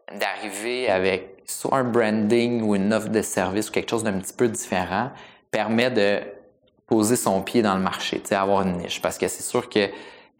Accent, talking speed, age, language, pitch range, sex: Canadian, 190 wpm, 20-39, French, 95-115 Hz, male